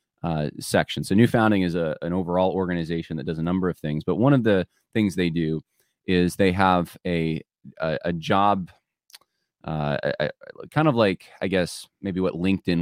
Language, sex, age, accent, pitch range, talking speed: English, male, 20-39, American, 80-100 Hz, 175 wpm